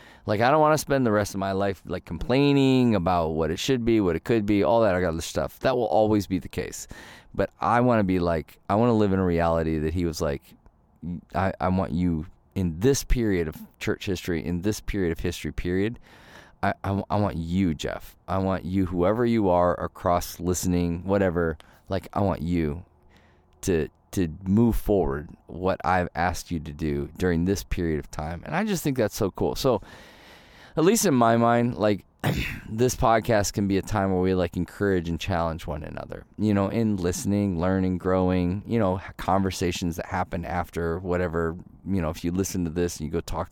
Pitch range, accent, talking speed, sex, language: 85-105 Hz, American, 210 wpm, male, English